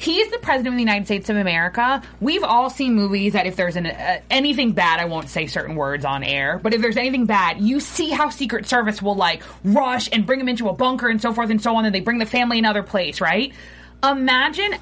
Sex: female